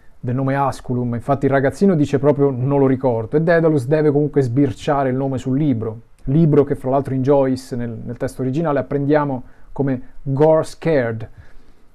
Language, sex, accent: Italian, male, native